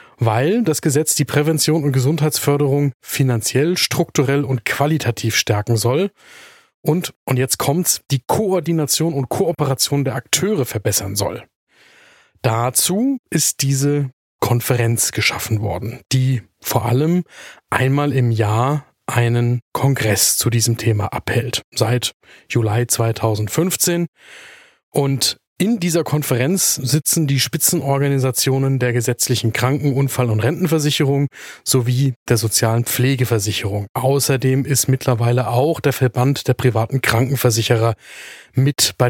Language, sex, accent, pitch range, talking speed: German, male, German, 120-150 Hz, 115 wpm